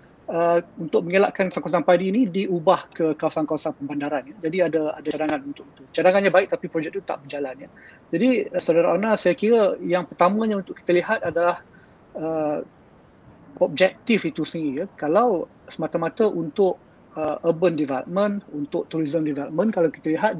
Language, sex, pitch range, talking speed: Malay, male, 155-190 Hz, 155 wpm